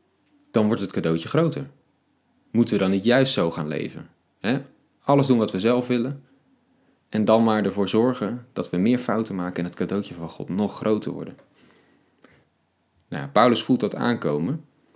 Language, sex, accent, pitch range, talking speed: Dutch, male, Dutch, 95-135 Hz, 165 wpm